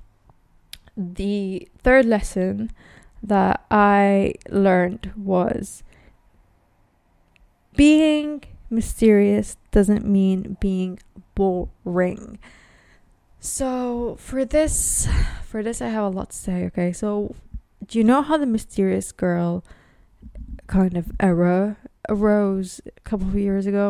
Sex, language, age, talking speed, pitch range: female, English, 20-39, 105 wpm, 185-215 Hz